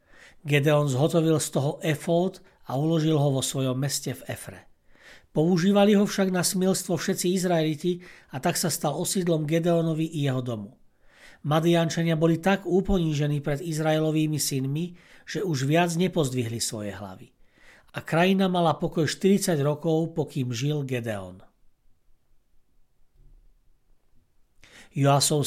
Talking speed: 125 wpm